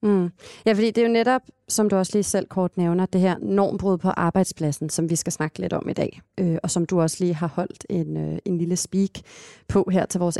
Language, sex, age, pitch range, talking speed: Danish, female, 30-49, 170-200 Hz, 235 wpm